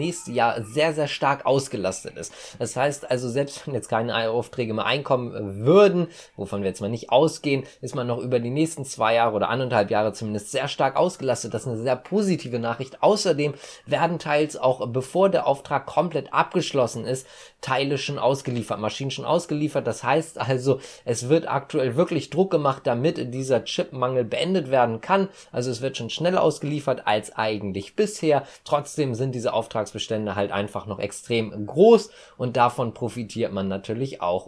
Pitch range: 115-150 Hz